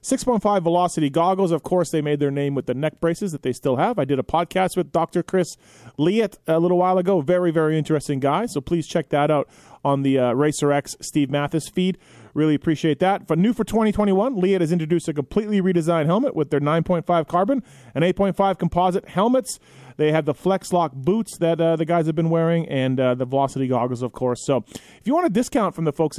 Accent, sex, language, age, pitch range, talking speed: American, male, English, 30-49, 145-185 Hz, 215 wpm